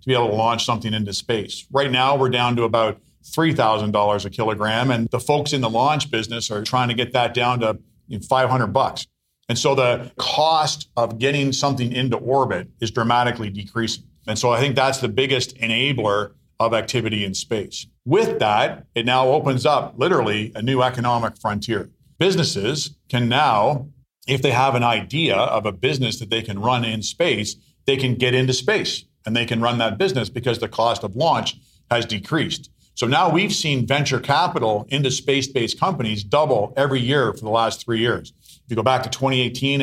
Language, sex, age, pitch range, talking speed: English, male, 50-69, 115-135 Hz, 190 wpm